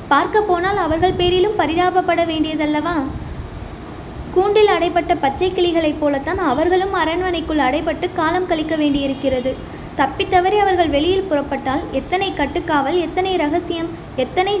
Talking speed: 105 wpm